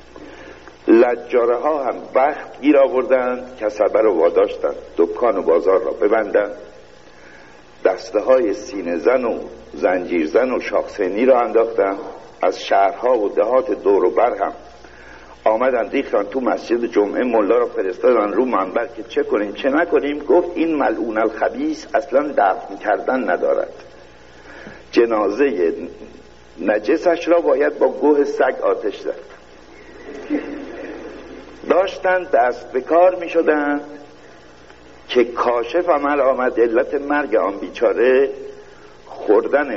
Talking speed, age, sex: 120 wpm, 60-79, male